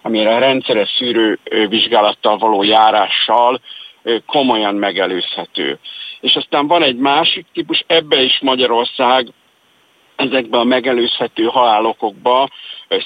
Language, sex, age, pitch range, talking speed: Hungarian, male, 50-69, 110-130 Hz, 100 wpm